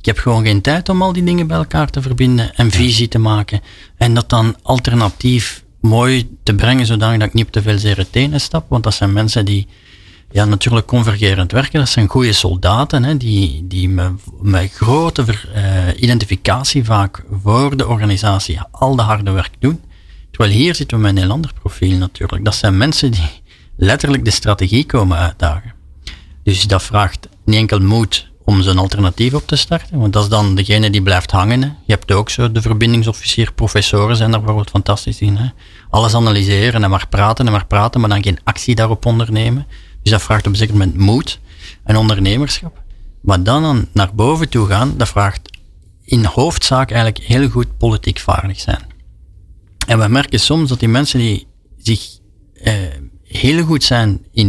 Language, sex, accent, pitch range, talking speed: Dutch, male, Dutch, 95-120 Hz, 185 wpm